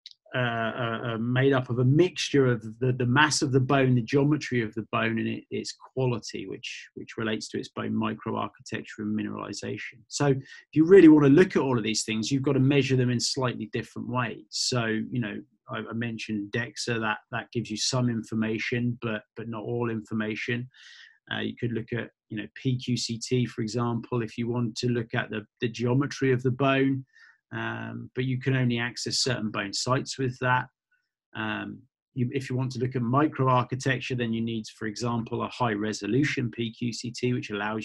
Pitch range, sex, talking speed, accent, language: 115-130 Hz, male, 195 wpm, British, English